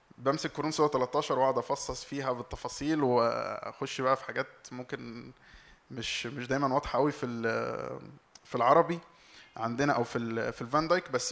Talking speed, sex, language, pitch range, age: 155 wpm, male, Arabic, 125-165 Hz, 20-39